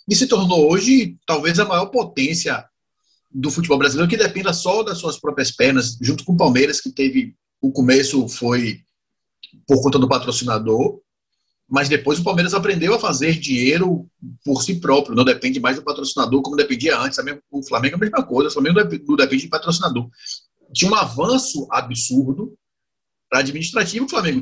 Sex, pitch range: male, 130-195 Hz